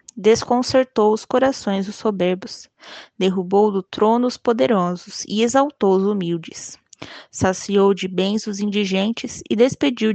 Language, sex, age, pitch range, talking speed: Portuguese, female, 20-39, 185-215 Hz, 125 wpm